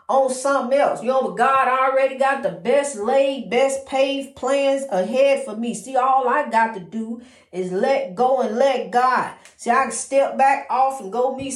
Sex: female